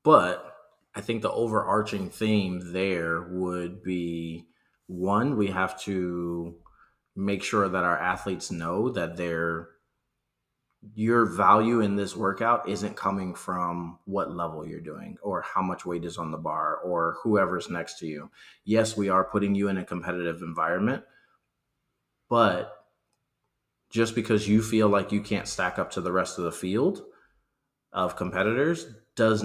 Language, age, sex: English, 30-49, male